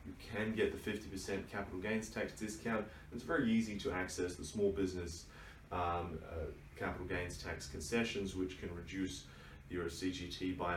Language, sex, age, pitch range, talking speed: English, male, 30-49, 85-110 Hz, 160 wpm